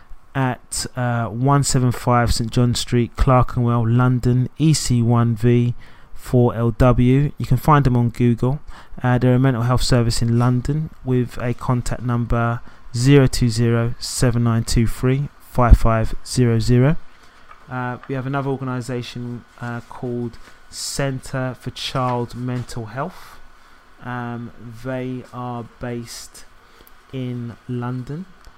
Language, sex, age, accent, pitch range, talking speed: English, male, 20-39, British, 115-125 Hz, 95 wpm